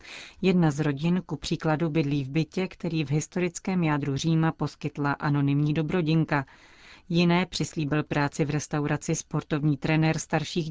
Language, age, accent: Czech, 40-59, native